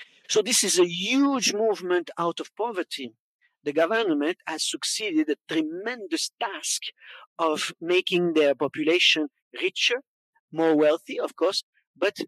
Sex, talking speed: male, 125 wpm